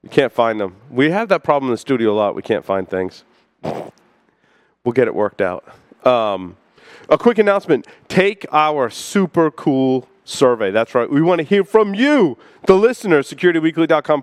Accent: American